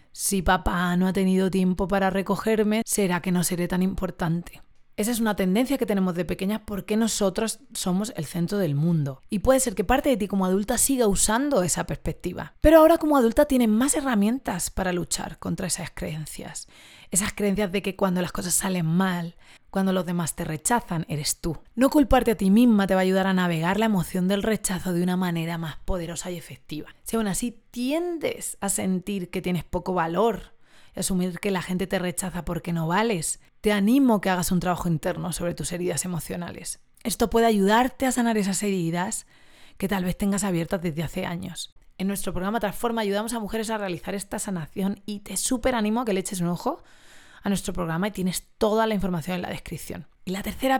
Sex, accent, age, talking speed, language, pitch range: female, Spanish, 30-49, 200 wpm, Spanish, 180-220 Hz